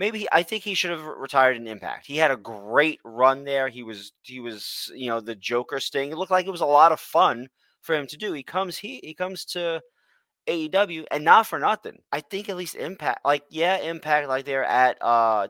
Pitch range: 115-165 Hz